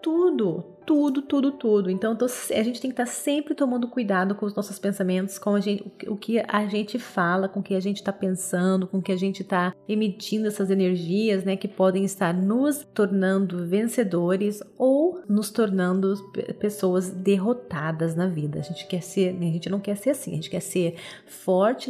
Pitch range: 185-220 Hz